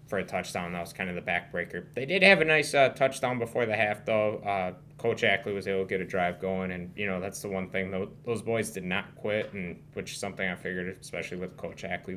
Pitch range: 95-115 Hz